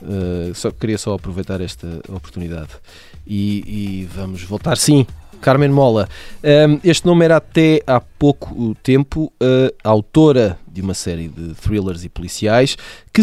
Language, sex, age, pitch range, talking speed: Portuguese, male, 20-39, 95-140 Hz, 125 wpm